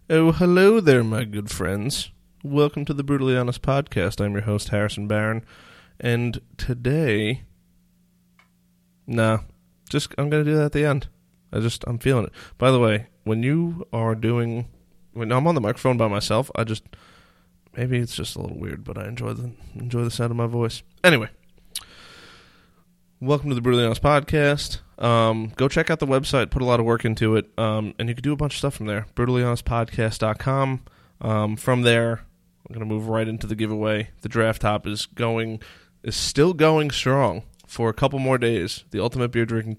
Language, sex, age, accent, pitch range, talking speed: English, male, 20-39, American, 105-125 Hz, 190 wpm